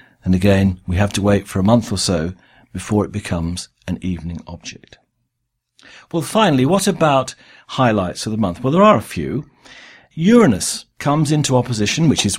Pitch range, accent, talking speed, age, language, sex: 100-125 Hz, British, 175 wpm, 50-69, English, male